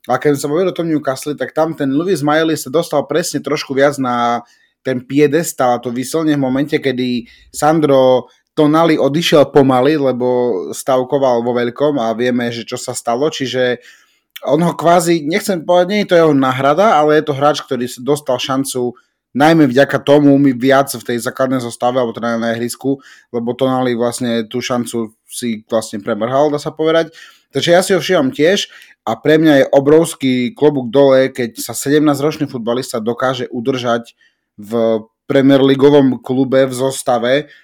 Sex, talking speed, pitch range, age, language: male, 165 wpm, 125-150 Hz, 30-49, Slovak